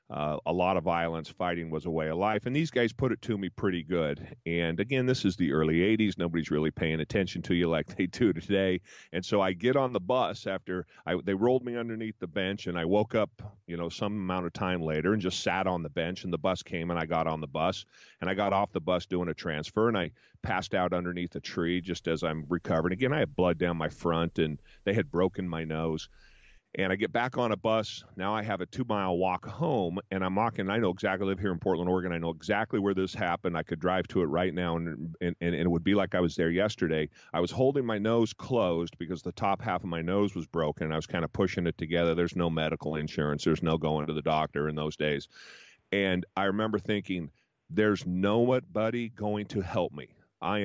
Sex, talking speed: male, 245 wpm